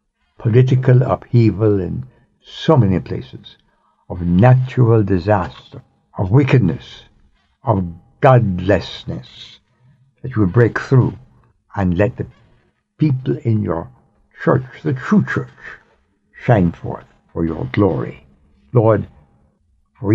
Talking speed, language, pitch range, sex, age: 105 wpm, English, 95-130 Hz, male, 60-79